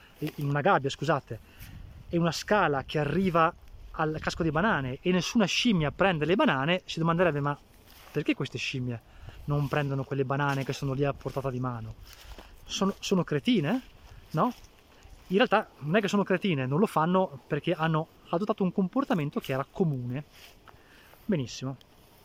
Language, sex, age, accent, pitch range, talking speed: Italian, male, 20-39, native, 135-185 Hz, 160 wpm